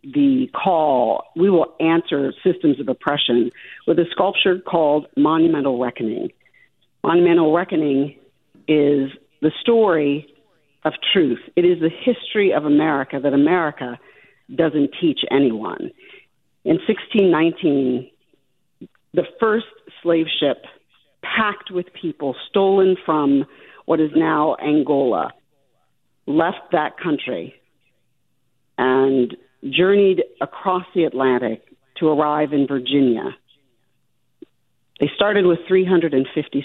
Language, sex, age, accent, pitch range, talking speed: English, female, 50-69, American, 140-185 Hz, 105 wpm